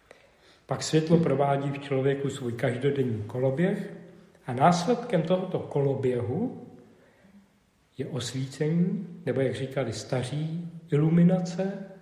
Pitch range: 125-175 Hz